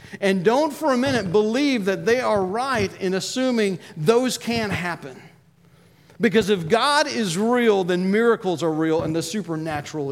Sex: male